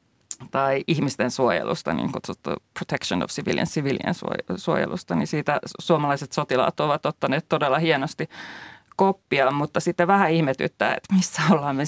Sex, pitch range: female, 130-155 Hz